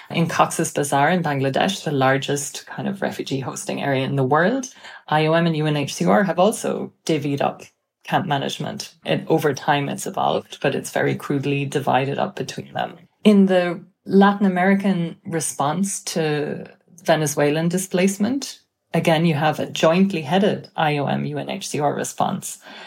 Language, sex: English, female